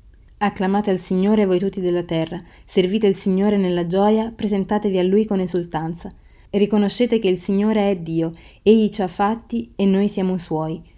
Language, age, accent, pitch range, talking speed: Italian, 30-49, native, 175-200 Hz, 175 wpm